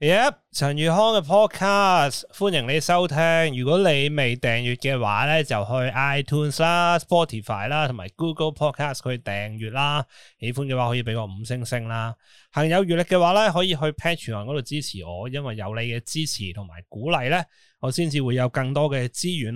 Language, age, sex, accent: Chinese, 20-39, male, native